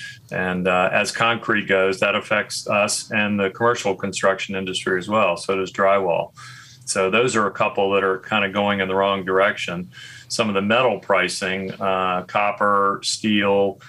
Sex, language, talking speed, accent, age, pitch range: male, English, 175 wpm, American, 40-59, 95-110 Hz